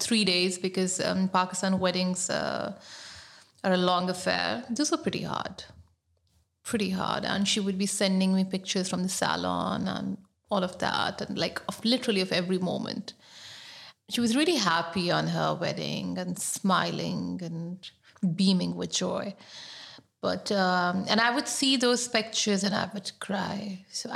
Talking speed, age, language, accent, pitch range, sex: 155 wpm, 30-49, English, Indian, 175-210 Hz, female